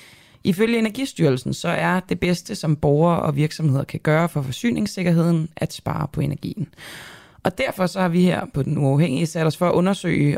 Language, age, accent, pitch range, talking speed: Danish, 20-39, native, 150-185 Hz, 185 wpm